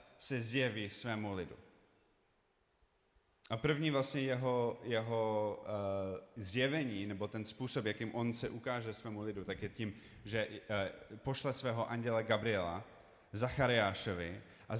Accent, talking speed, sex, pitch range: native, 120 wpm, male, 105-130 Hz